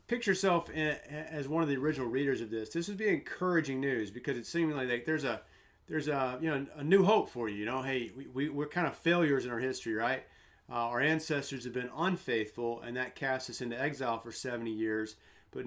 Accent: American